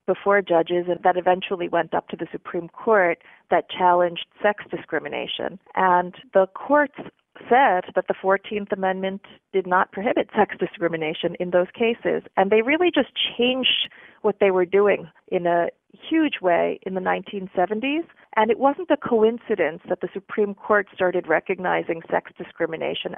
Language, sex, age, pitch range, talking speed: English, female, 30-49, 175-220 Hz, 155 wpm